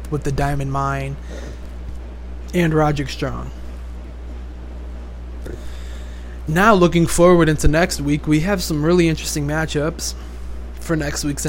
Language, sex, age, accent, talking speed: English, male, 20-39, American, 115 wpm